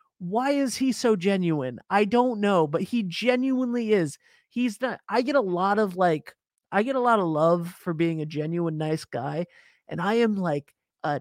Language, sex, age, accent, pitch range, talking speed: English, male, 30-49, American, 145-185 Hz, 200 wpm